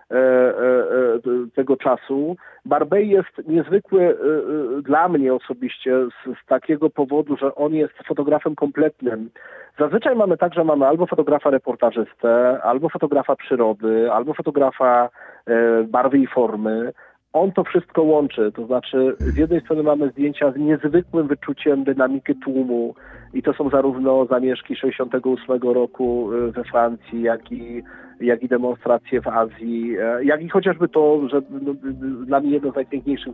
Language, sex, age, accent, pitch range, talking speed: Polish, male, 40-59, native, 120-150 Hz, 145 wpm